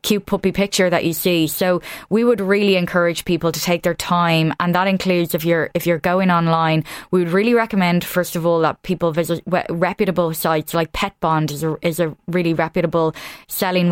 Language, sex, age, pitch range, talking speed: English, female, 20-39, 160-185 Hz, 200 wpm